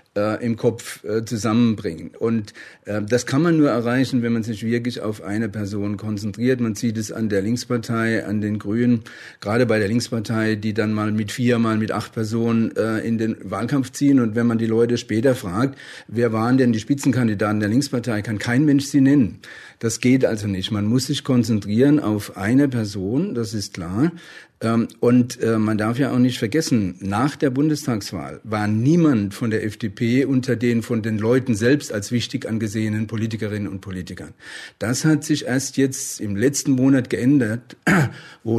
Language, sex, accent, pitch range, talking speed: German, male, German, 110-130 Hz, 175 wpm